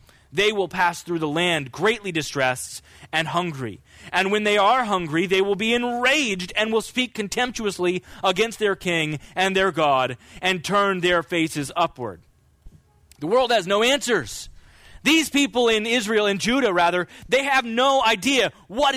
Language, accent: English, American